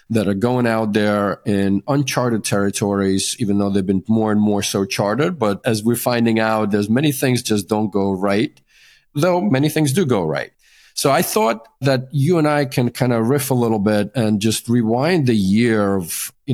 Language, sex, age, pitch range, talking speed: English, male, 40-59, 105-125 Hz, 205 wpm